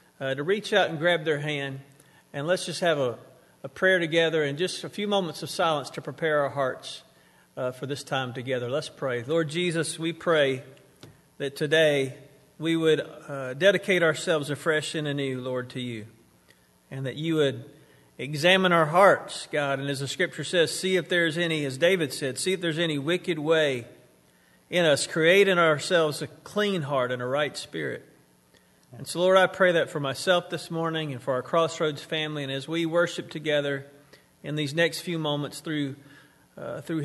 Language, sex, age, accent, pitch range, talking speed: English, male, 50-69, American, 135-170 Hz, 190 wpm